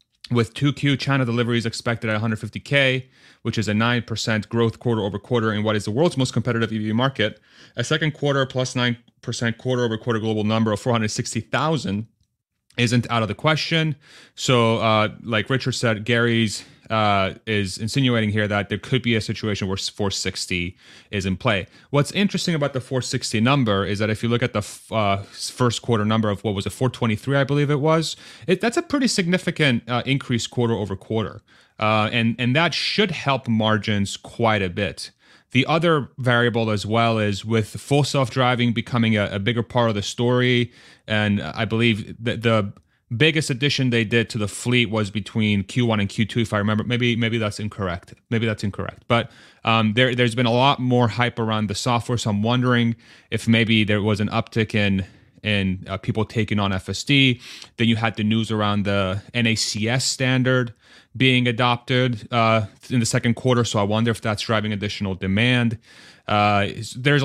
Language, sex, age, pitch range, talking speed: English, male, 30-49, 105-125 Hz, 185 wpm